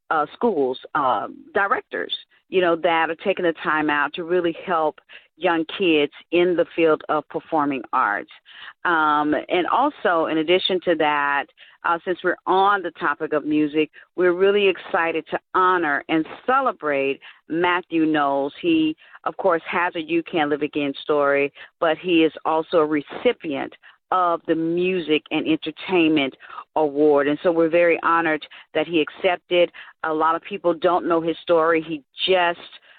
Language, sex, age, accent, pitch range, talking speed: English, female, 40-59, American, 155-180 Hz, 160 wpm